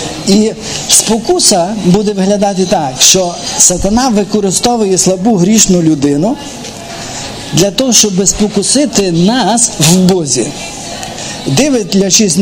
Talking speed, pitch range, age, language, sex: 90 wpm, 175-220 Hz, 50-69, Ukrainian, male